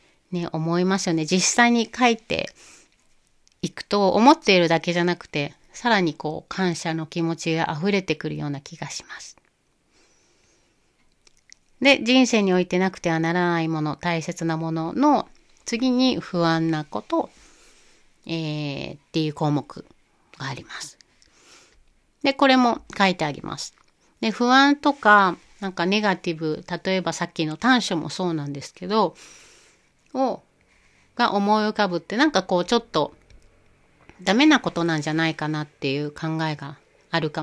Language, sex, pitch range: Japanese, female, 160-210 Hz